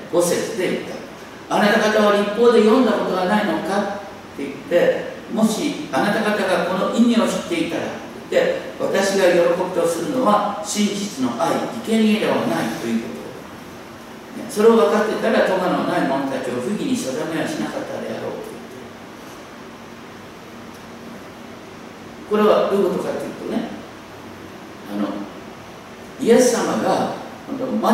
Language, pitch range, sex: Japanese, 200-235 Hz, male